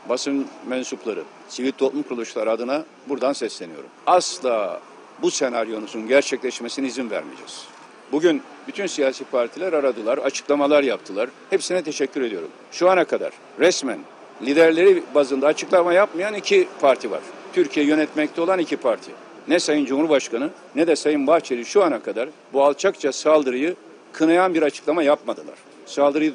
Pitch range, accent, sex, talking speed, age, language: 145-205 Hz, native, male, 130 wpm, 60-79, Turkish